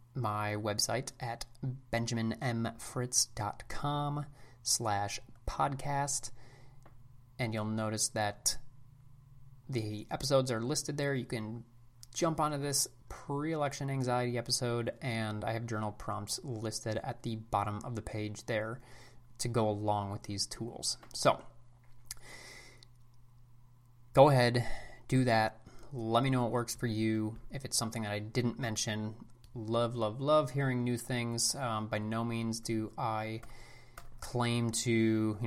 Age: 30-49